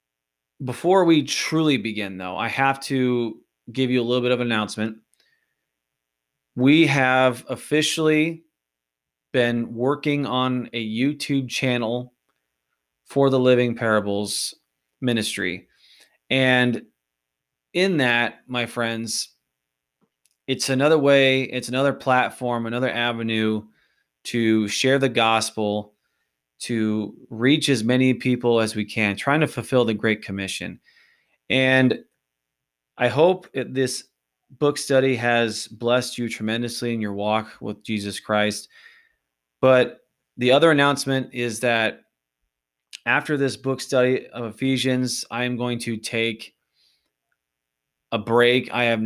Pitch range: 105-130 Hz